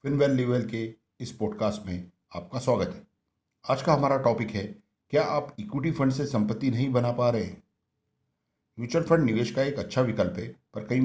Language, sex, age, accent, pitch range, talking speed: English, male, 50-69, Indian, 105-125 Hz, 185 wpm